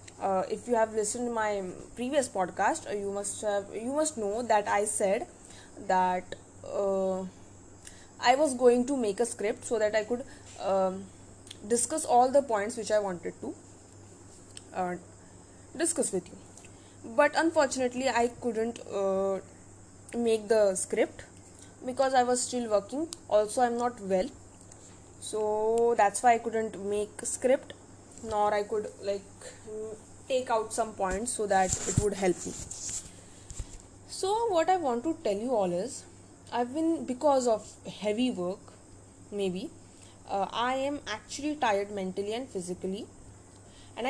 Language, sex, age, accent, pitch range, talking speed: English, female, 10-29, Indian, 175-240 Hz, 145 wpm